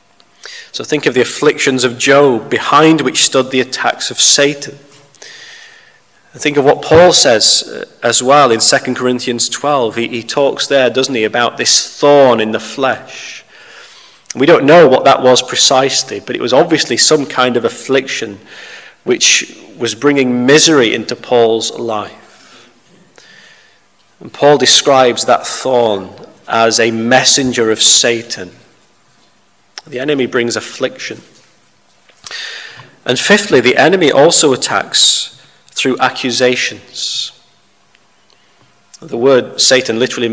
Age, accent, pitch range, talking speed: 30-49, British, 115-140 Hz, 125 wpm